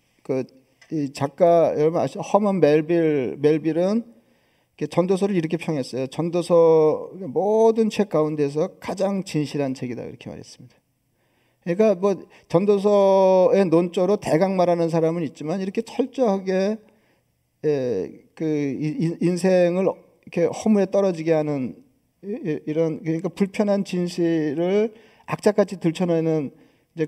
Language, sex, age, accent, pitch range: Korean, male, 40-59, native, 150-190 Hz